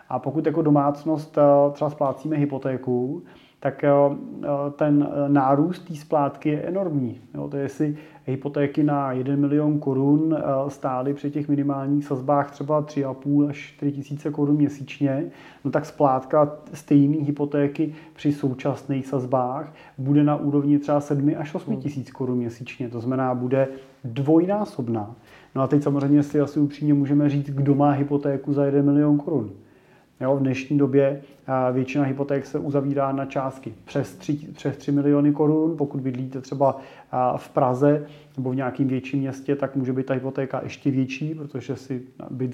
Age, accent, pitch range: 30-49, native, 135-145 Hz